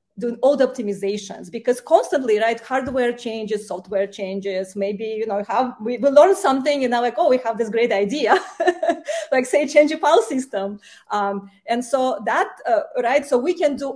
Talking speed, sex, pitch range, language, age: 190 wpm, female, 205-275 Hz, English, 30-49